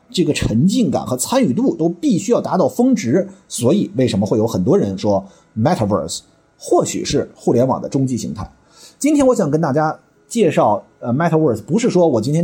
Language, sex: Chinese, male